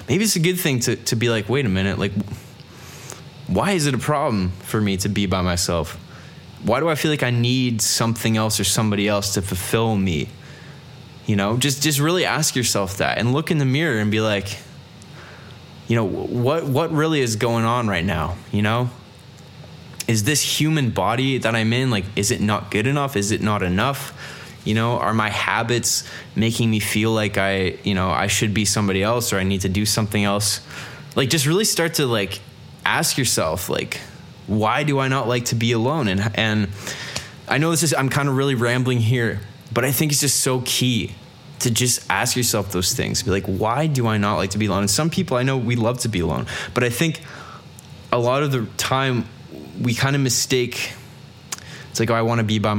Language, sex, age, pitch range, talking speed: English, male, 20-39, 105-135 Hz, 215 wpm